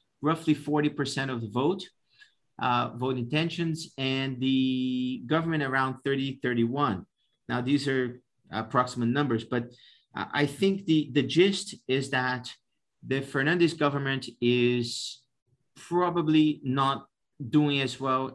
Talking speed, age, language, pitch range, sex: 115 wpm, 50-69, English, 125-155 Hz, male